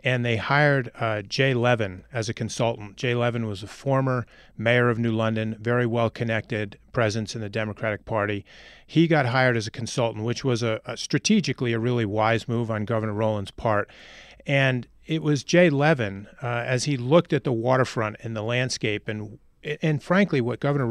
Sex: male